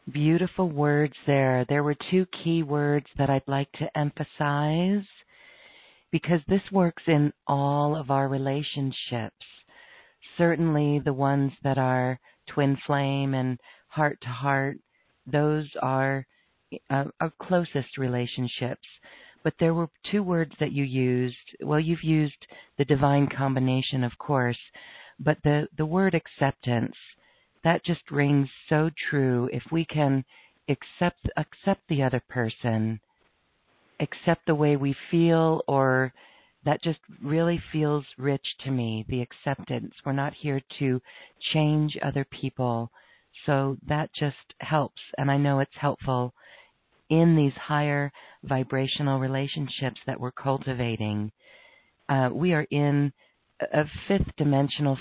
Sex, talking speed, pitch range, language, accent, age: female, 125 wpm, 135-155 Hz, English, American, 50-69